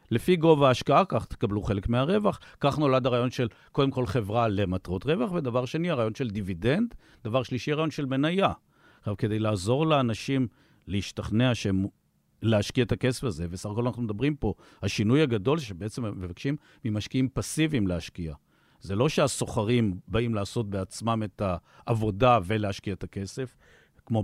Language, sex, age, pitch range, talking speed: Hebrew, male, 50-69, 105-135 Hz, 145 wpm